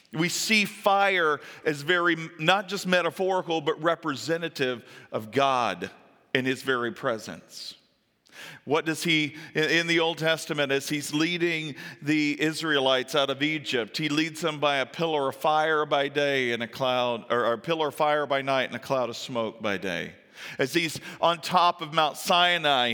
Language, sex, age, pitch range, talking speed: English, male, 40-59, 135-170 Hz, 170 wpm